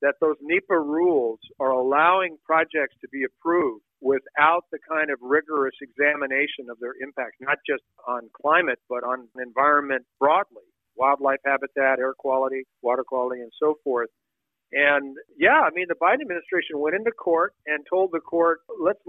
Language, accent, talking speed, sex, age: English, American, 160 wpm, male, 50-69